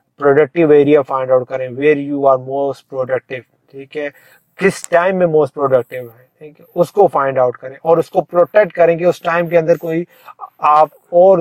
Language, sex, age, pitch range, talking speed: English, male, 30-49, 130-155 Hz, 160 wpm